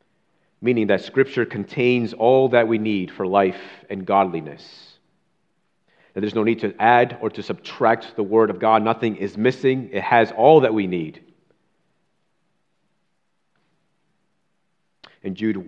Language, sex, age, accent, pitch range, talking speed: English, male, 40-59, American, 105-125 Hz, 140 wpm